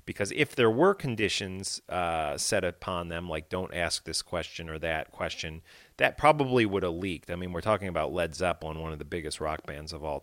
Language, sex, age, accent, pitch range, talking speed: English, male, 30-49, American, 85-110 Hz, 215 wpm